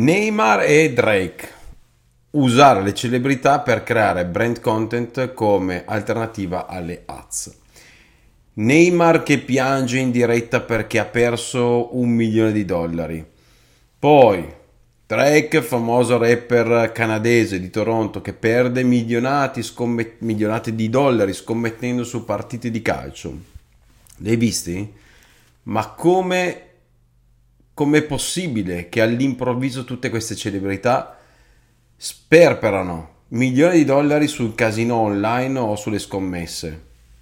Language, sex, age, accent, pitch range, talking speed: Italian, male, 40-59, native, 100-130 Hz, 105 wpm